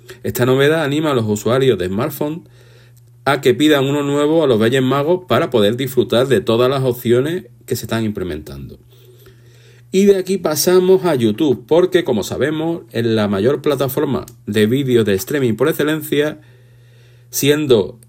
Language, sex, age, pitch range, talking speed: Spanish, male, 50-69, 120-145 Hz, 160 wpm